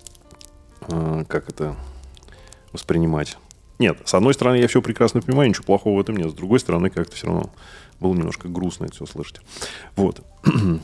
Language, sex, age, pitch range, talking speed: Russian, male, 30-49, 85-120 Hz, 165 wpm